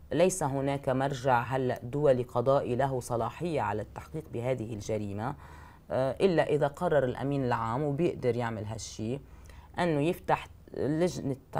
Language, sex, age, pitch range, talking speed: Arabic, female, 30-49, 115-160 Hz, 120 wpm